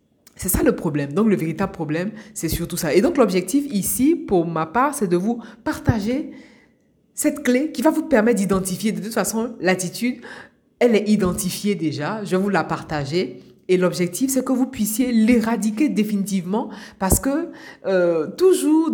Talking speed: 170 wpm